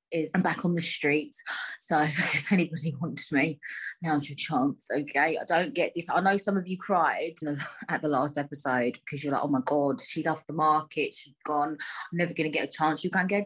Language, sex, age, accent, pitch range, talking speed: English, female, 20-39, British, 150-200 Hz, 225 wpm